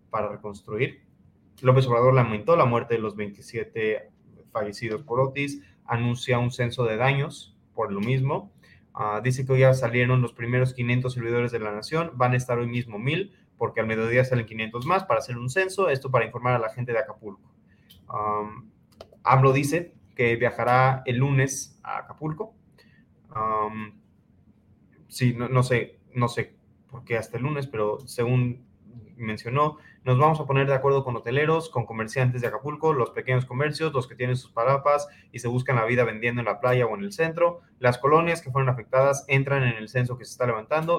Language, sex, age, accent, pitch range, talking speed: Spanish, male, 20-39, Mexican, 115-140 Hz, 180 wpm